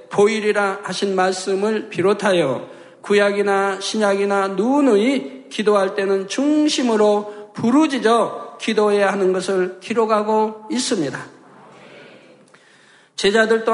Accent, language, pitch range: native, Korean, 200-240 Hz